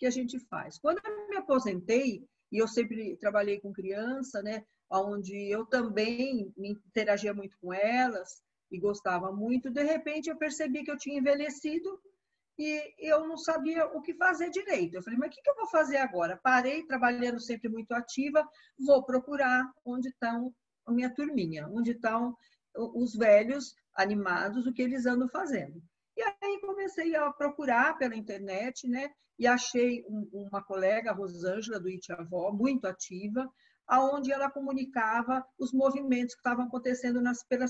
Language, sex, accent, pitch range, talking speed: Portuguese, female, Brazilian, 205-280 Hz, 160 wpm